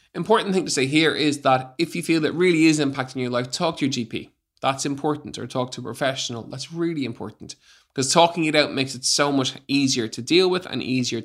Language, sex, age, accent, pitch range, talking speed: English, male, 20-39, Irish, 120-145 Hz, 235 wpm